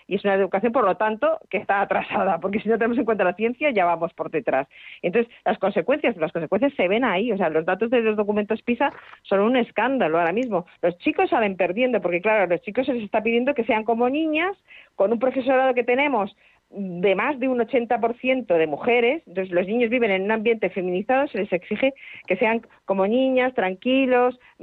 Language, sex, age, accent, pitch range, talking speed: Spanish, female, 40-59, Spanish, 200-270 Hz, 210 wpm